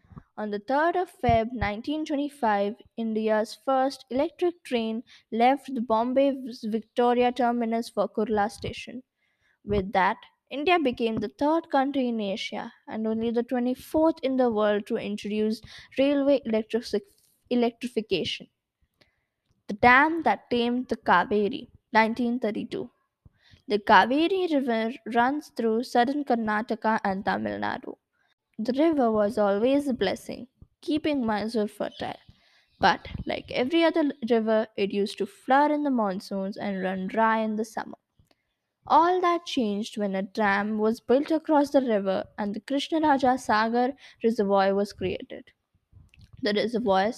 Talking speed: 130 wpm